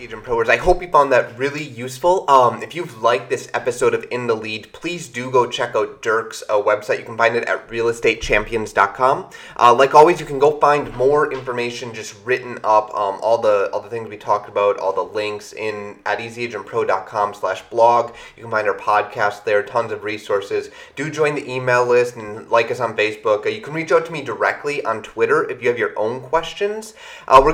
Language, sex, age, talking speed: English, male, 30-49, 215 wpm